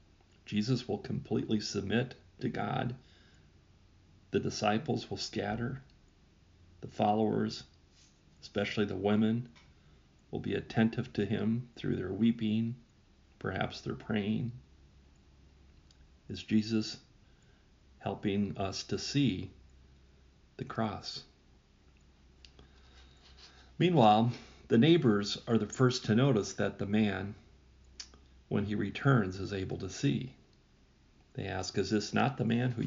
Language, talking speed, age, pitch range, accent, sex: English, 110 wpm, 40-59, 75-120 Hz, American, male